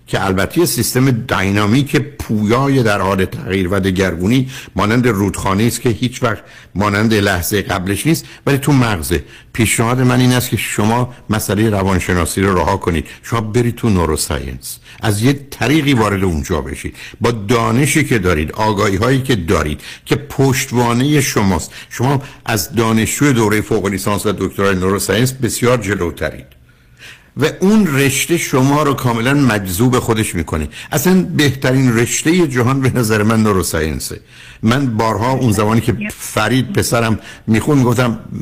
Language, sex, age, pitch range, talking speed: Persian, male, 60-79, 100-130 Hz, 145 wpm